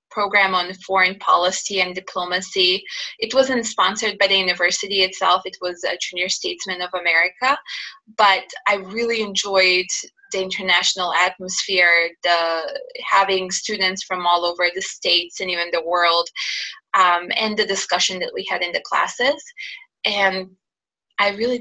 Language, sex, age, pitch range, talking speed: English, female, 20-39, 185-240 Hz, 145 wpm